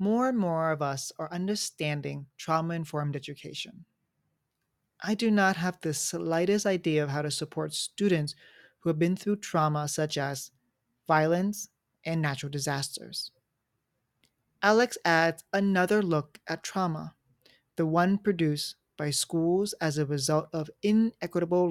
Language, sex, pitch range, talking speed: English, male, 150-190 Hz, 135 wpm